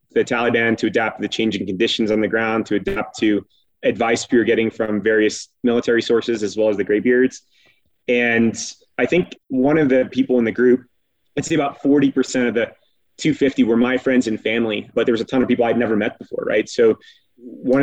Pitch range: 110-130 Hz